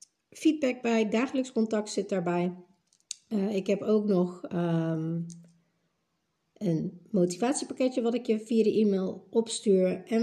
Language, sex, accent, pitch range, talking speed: Dutch, female, Dutch, 185-235 Hz, 130 wpm